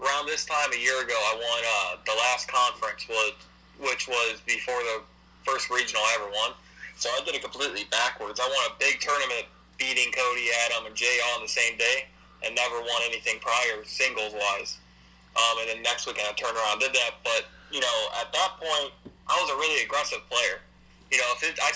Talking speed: 215 wpm